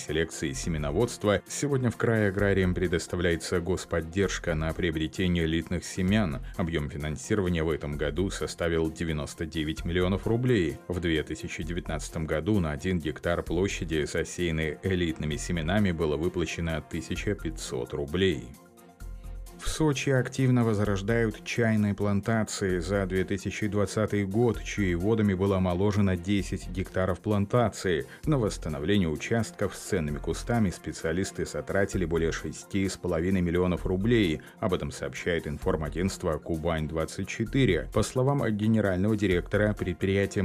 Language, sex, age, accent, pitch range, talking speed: Russian, male, 30-49, native, 85-105 Hz, 110 wpm